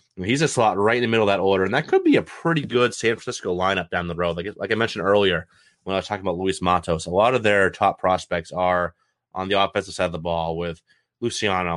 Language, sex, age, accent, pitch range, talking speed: English, male, 30-49, American, 85-100 Hz, 260 wpm